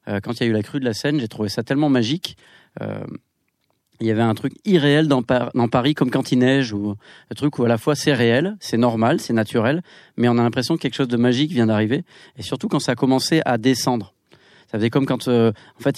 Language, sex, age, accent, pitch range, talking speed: French, male, 30-49, French, 115-145 Hz, 260 wpm